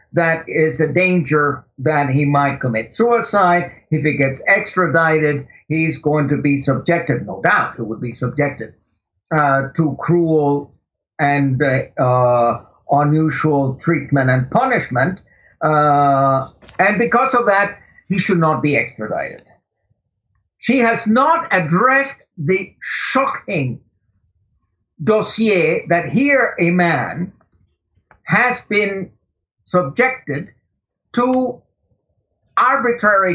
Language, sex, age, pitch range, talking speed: Dutch, male, 60-79, 145-225 Hz, 105 wpm